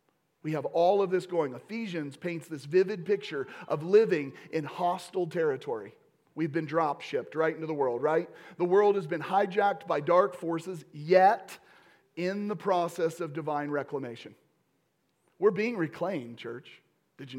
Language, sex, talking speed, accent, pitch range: English, male, 155 wpm, American, 160-205 Hz